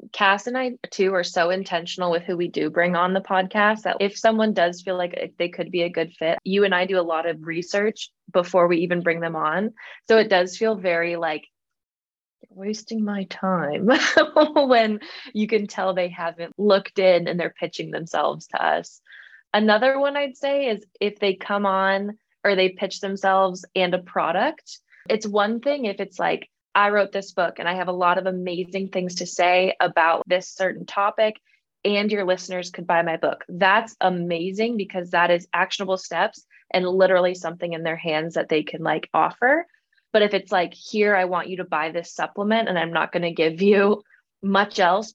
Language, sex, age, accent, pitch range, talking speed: English, female, 20-39, American, 175-205 Hz, 200 wpm